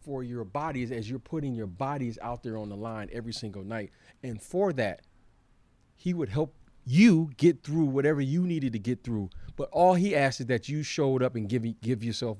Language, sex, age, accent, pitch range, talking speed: English, male, 40-59, American, 110-155 Hz, 215 wpm